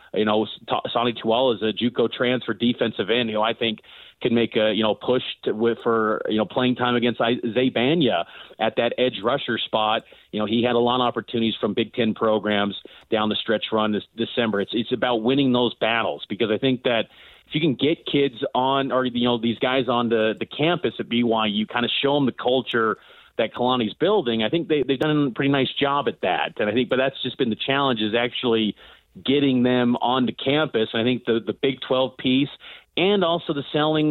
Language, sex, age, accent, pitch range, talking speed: English, male, 30-49, American, 115-135 Hz, 220 wpm